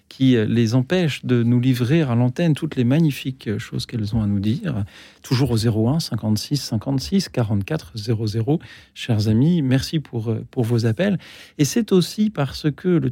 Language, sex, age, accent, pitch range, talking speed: French, male, 40-59, French, 110-135 Hz, 170 wpm